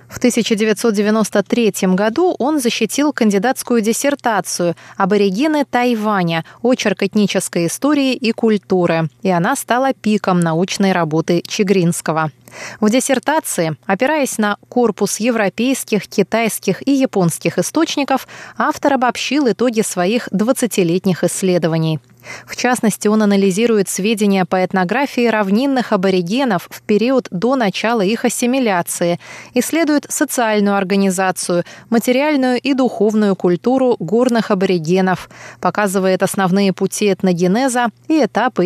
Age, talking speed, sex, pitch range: 20-39, 105 wpm, female, 180-240 Hz